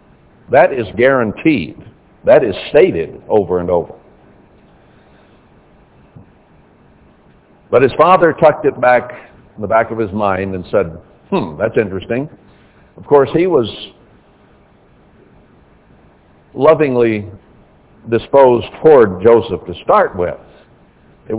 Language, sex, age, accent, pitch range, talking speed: English, male, 60-79, American, 105-145 Hz, 105 wpm